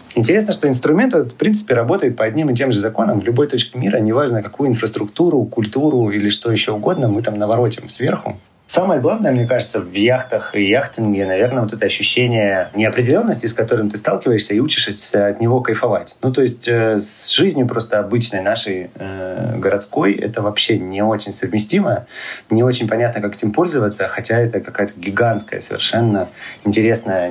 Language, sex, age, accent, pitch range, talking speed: Russian, male, 30-49, native, 95-115 Hz, 175 wpm